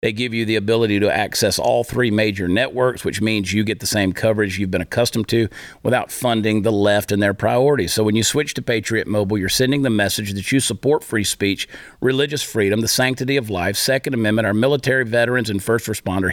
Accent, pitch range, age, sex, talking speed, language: American, 100-135 Hz, 50-69, male, 215 wpm, English